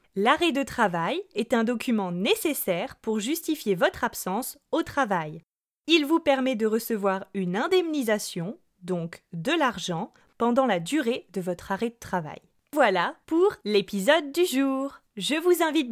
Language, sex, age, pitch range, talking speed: French, female, 20-39, 210-320 Hz, 145 wpm